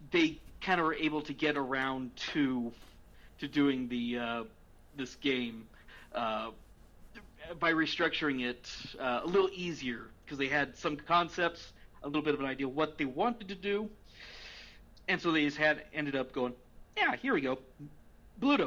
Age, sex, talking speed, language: 40-59, male, 170 wpm, English